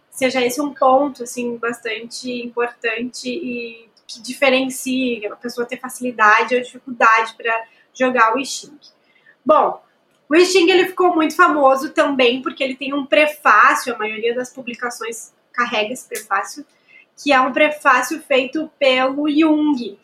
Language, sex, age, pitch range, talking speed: Portuguese, female, 20-39, 255-315 Hz, 145 wpm